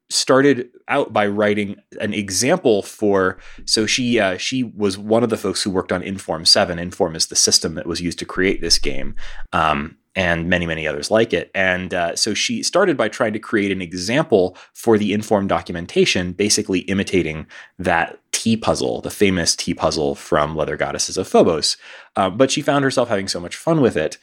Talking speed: 195 wpm